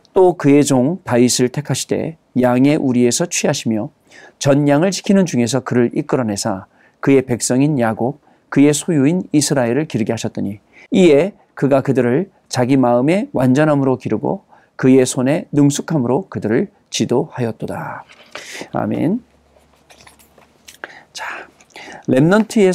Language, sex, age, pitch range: Korean, male, 40-59, 125-185 Hz